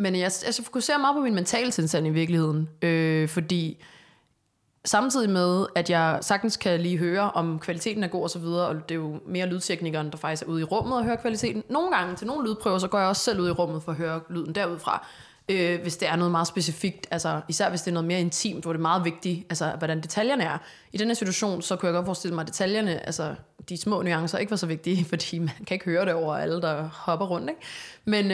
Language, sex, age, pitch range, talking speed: Danish, female, 20-39, 170-210 Hz, 240 wpm